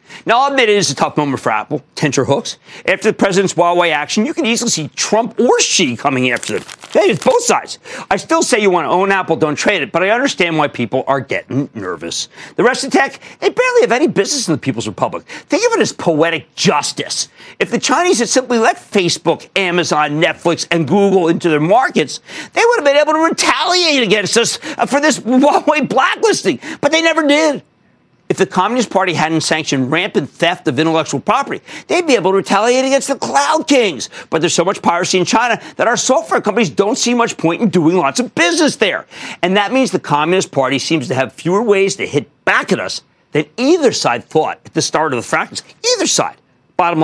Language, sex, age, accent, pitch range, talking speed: English, male, 50-69, American, 155-250 Hz, 215 wpm